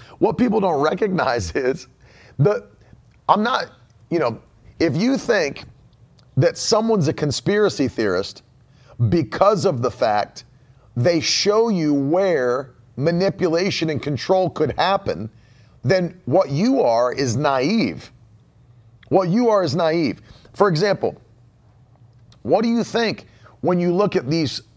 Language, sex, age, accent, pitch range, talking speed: English, male, 40-59, American, 125-175 Hz, 130 wpm